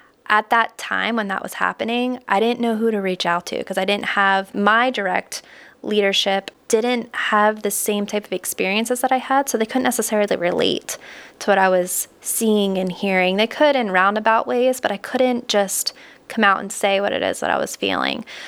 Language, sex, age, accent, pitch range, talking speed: English, female, 20-39, American, 195-235 Hz, 210 wpm